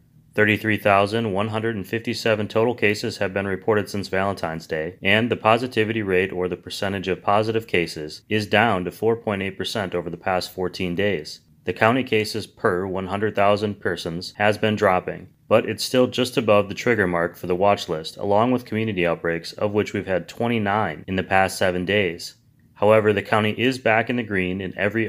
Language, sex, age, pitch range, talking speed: English, male, 30-49, 90-110 Hz, 175 wpm